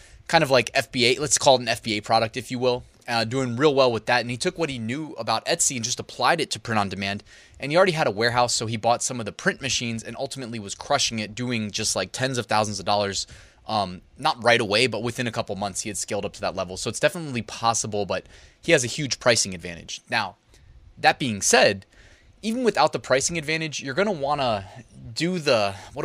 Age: 20-39